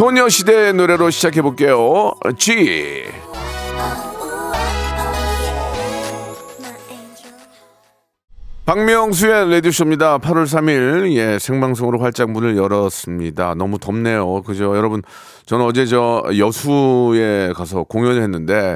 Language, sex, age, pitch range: Korean, male, 40-59, 110-170 Hz